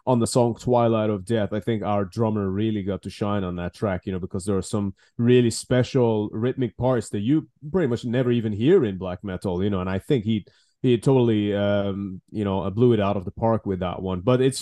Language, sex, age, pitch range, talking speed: English, male, 20-39, 100-125 Hz, 240 wpm